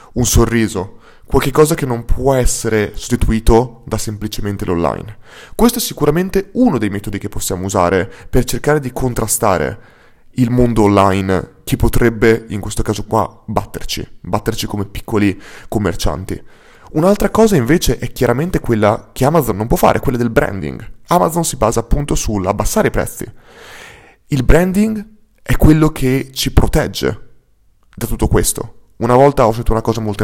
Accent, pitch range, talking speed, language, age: native, 105-135 Hz, 150 wpm, Italian, 30-49